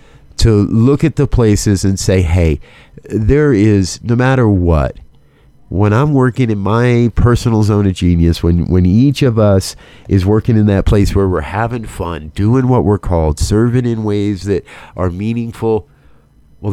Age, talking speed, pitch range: 50-69, 170 wpm, 95-125 Hz